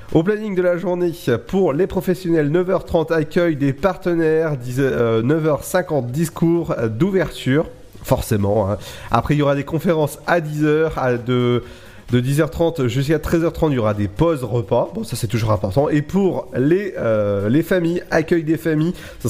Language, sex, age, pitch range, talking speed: French, male, 30-49, 130-170 Hz, 160 wpm